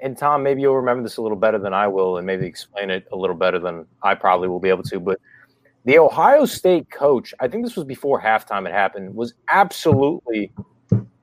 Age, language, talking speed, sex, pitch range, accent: 30-49, English, 220 wpm, male, 105-145 Hz, American